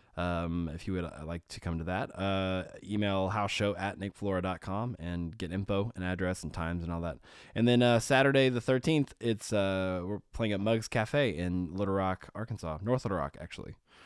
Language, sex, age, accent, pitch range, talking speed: English, male, 20-39, American, 90-110 Hz, 195 wpm